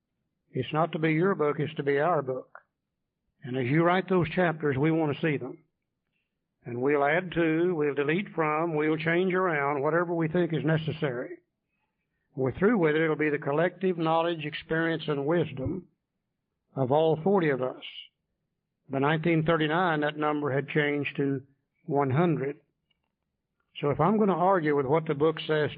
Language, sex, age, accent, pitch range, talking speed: English, male, 60-79, American, 145-175 Hz, 170 wpm